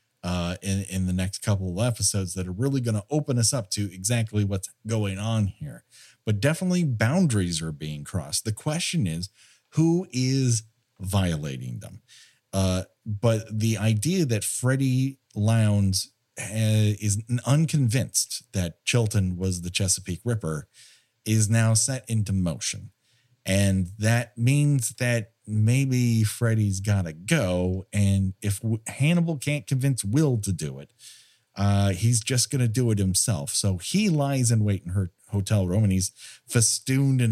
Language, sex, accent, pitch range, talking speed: English, male, American, 100-130 Hz, 150 wpm